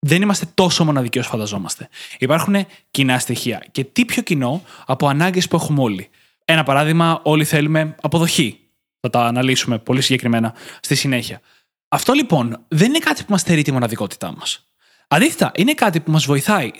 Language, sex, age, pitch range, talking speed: Greek, male, 20-39, 130-180 Hz, 170 wpm